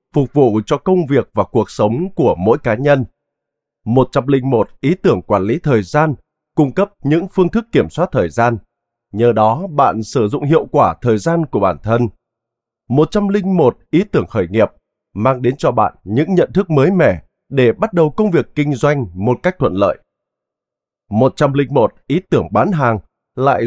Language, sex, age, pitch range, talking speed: Vietnamese, male, 20-39, 115-165 Hz, 180 wpm